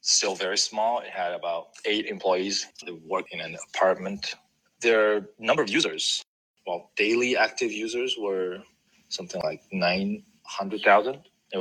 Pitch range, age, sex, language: 95-110 Hz, 20-39, male, Chinese